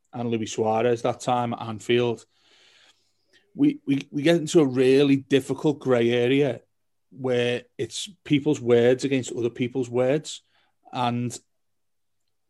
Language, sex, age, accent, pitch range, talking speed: English, male, 30-49, British, 120-140 Hz, 125 wpm